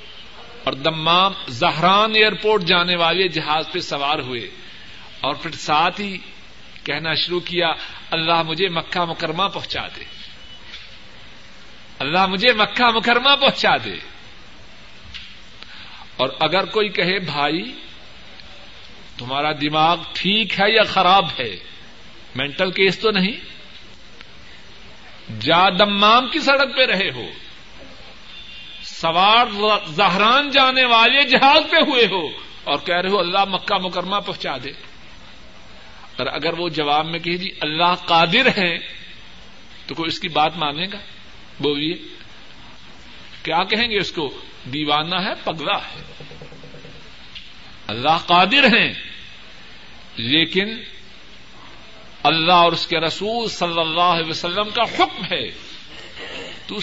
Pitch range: 160-205 Hz